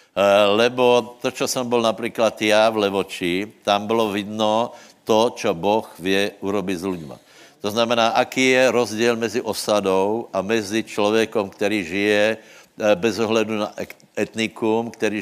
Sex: male